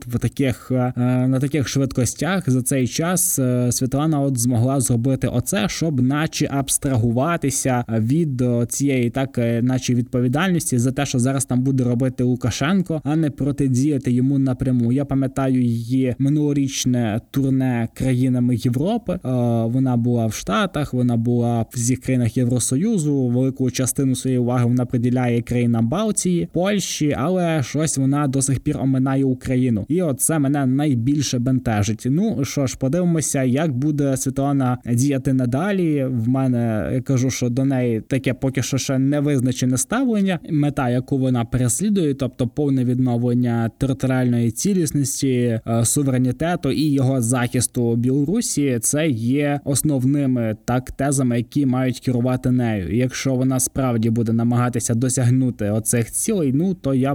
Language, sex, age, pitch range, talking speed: Ukrainian, male, 20-39, 125-140 Hz, 140 wpm